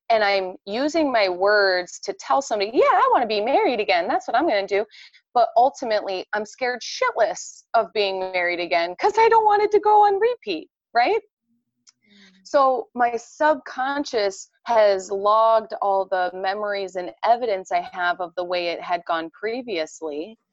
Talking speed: 170 wpm